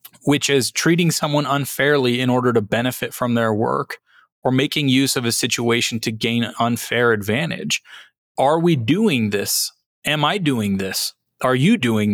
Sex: male